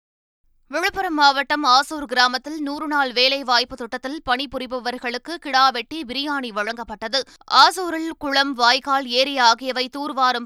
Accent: native